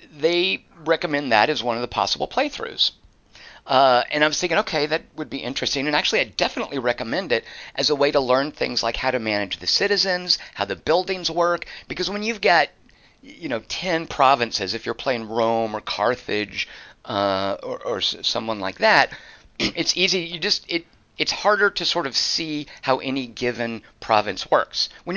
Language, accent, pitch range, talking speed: English, American, 115-165 Hz, 185 wpm